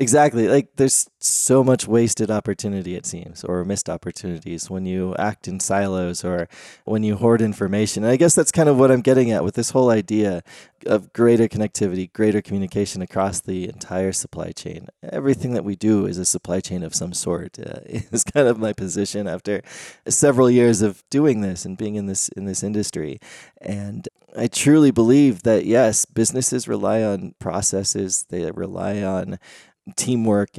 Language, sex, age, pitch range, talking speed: English, male, 20-39, 100-120 Hz, 175 wpm